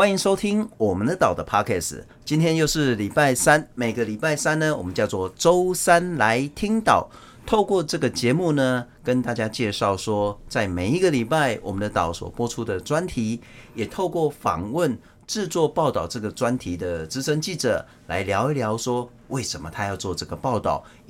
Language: Chinese